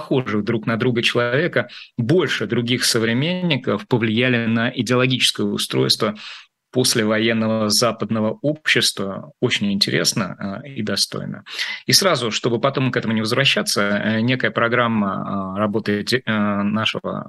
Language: Russian